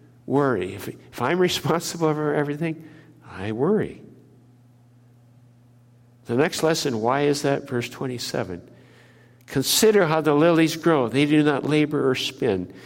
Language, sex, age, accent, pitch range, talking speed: English, male, 60-79, American, 120-150 Hz, 125 wpm